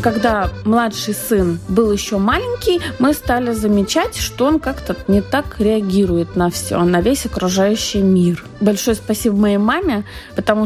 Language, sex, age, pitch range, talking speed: Russian, female, 20-39, 190-240 Hz, 145 wpm